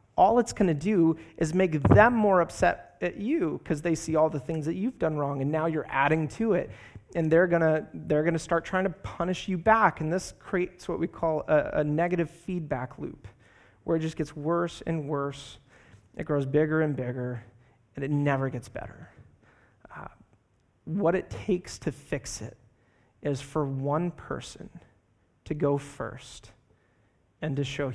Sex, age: male, 30-49